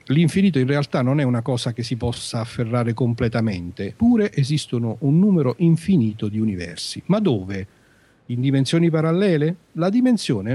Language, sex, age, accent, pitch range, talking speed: Italian, male, 50-69, native, 120-165 Hz, 150 wpm